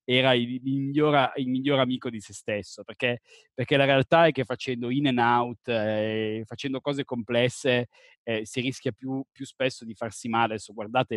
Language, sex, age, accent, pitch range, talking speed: Italian, male, 20-39, native, 115-130 Hz, 185 wpm